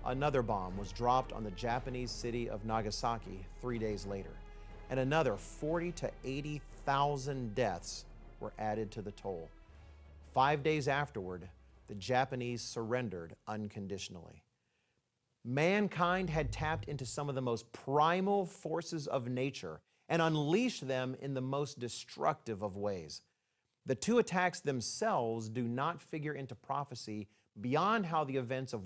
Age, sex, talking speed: 40-59, male, 135 wpm